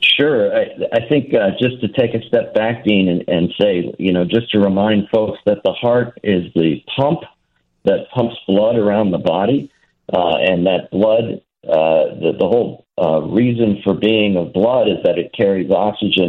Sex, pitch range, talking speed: male, 85-115 Hz, 190 wpm